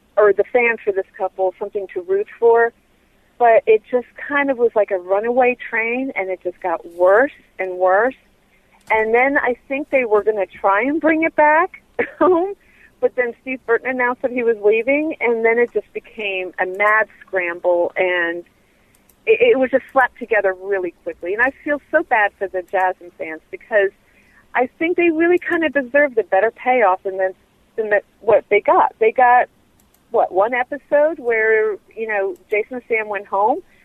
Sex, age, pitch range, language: female, 40-59, 205-285 Hz, English